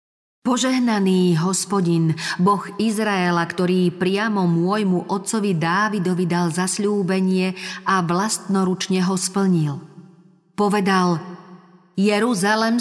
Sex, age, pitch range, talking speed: female, 40-59, 170-200 Hz, 80 wpm